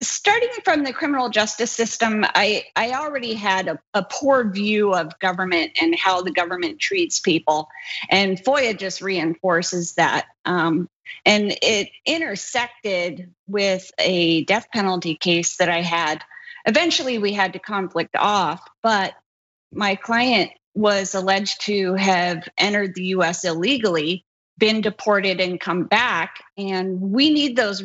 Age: 30-49